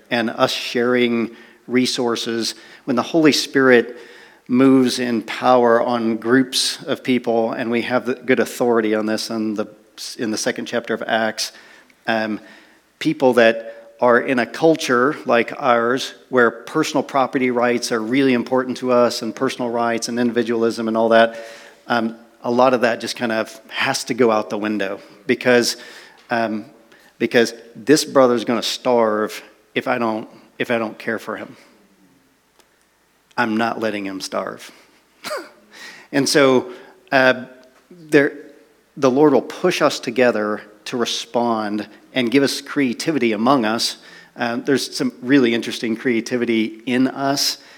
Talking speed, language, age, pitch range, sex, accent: 145 wpm, English, 40-59, 115-130 Hz, male, American